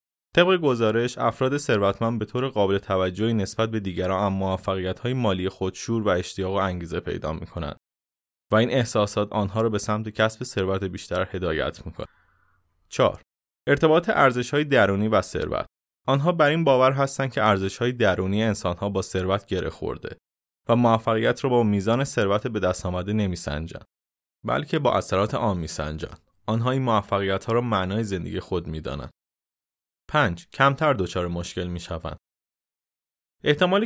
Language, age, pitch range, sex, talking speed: Persian, 20-39, 95-120 Hz, male, 155 wpm